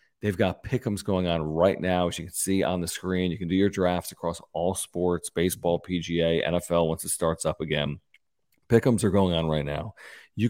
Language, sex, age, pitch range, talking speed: English, male, 40-59, 90-110 Hz, 210 wpm